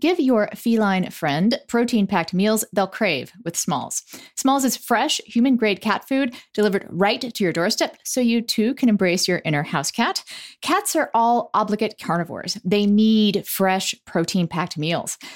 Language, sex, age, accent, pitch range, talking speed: English, female, 40-59, American, 185-255 Hz, 155 wpm